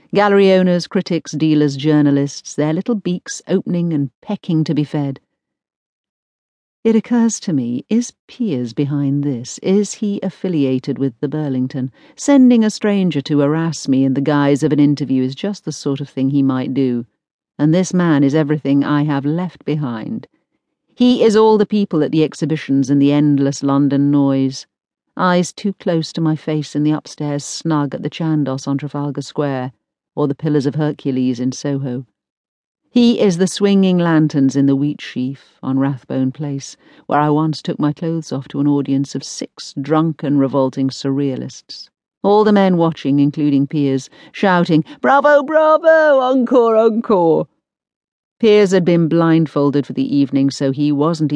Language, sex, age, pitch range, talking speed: English, female, 50-69, 140-195 Hz, 165 wpm